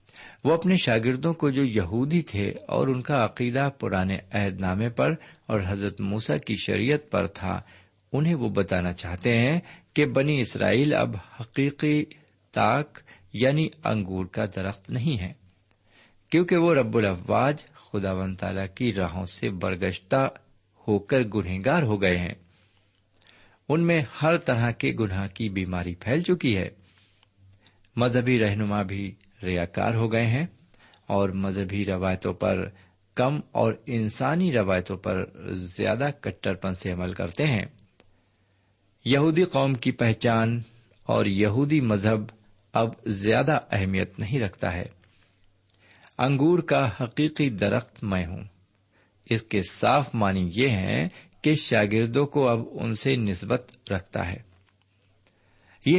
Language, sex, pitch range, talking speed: Urdu, male, 95-130 Hz, 135 wpm